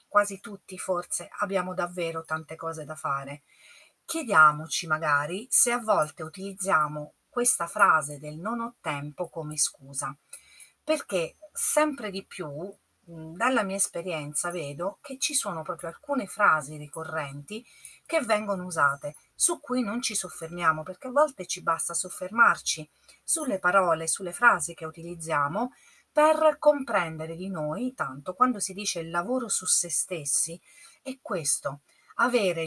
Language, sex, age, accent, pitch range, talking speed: Italian, female, 40-59, native, 160-230 Hz, 135 wpm